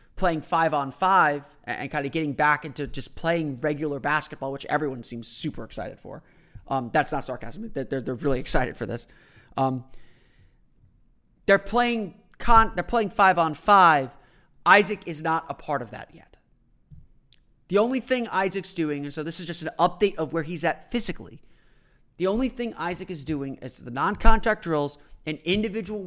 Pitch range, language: 140-185 Hz, English